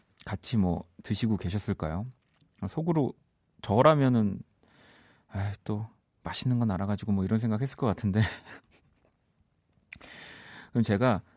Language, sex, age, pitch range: Korean, male, 40-59, 100-140 Hz